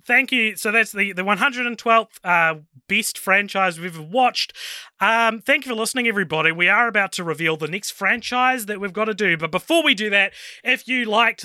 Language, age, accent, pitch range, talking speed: English, 30-49, Australian, 150-210 Hz, 210 wpm